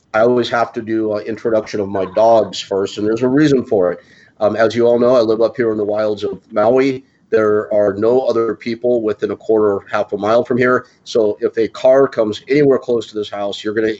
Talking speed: 245 wpm